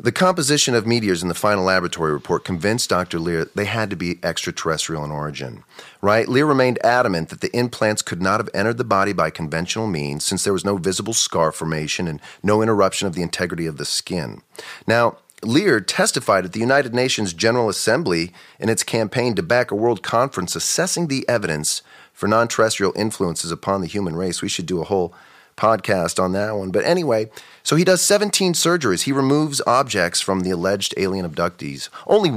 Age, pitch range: 30-49, 90-125 Hz